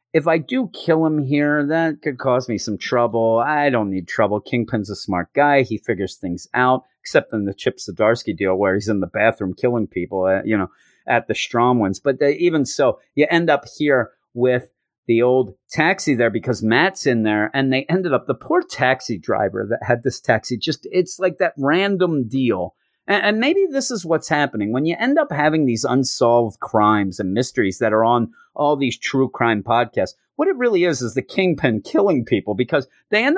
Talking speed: 205 wpm